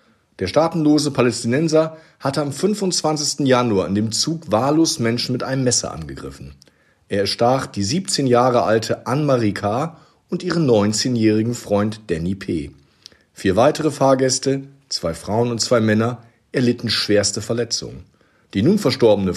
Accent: German